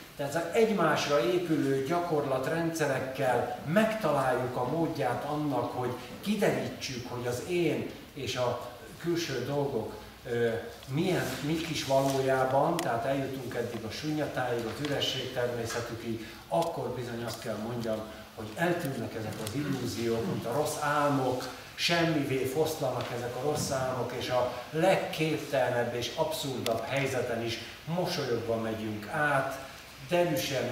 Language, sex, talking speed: Hungarian, male, 120 wpm